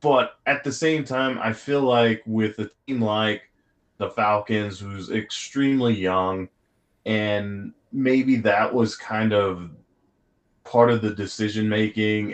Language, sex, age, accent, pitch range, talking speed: English, male, 20-39, American, 100-120 Hz, 130 wpm